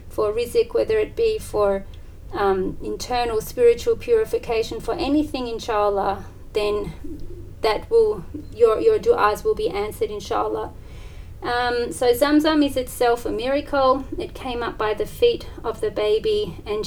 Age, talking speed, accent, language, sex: 40-59, 140 wpm, Australian, English, female